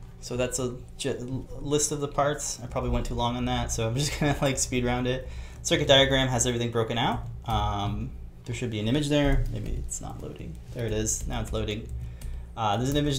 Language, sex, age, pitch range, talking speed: English, male, 20-39, 105-130 Hz, 225 wpm